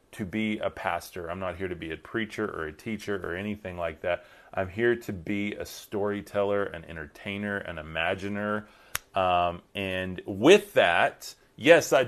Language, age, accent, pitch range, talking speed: English, 30-49, American, 100-115 Hz, 170 wpm